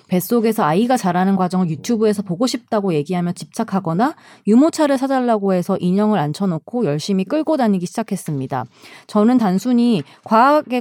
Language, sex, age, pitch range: Korean, female, 20-39, 180-250 Hz